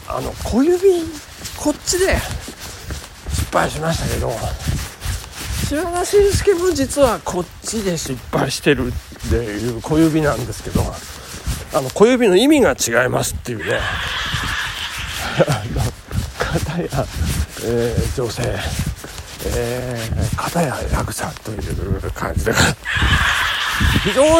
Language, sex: Japanese, male